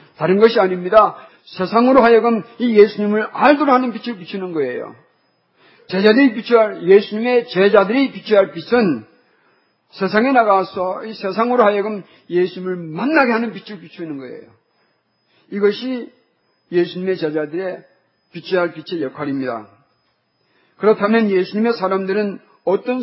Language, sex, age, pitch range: Korean, male, 50-69, 175-230 Hz